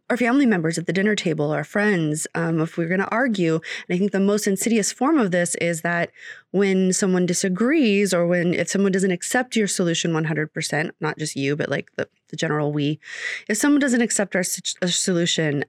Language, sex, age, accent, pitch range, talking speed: English, female, 20-39, American, 170-235 Hz, 205 wpm